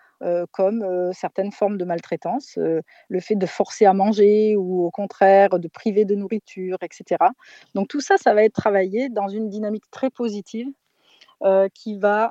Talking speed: 180 wpm